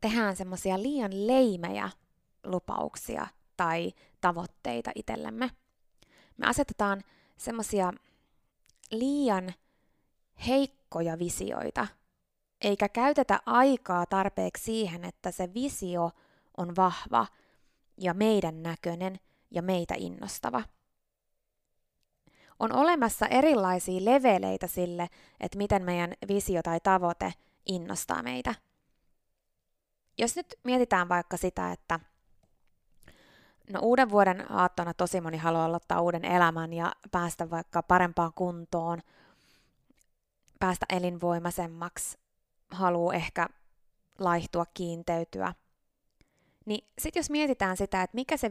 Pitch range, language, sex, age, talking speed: 175-230 Hz, Finnish, female, 20-39, 95 wpm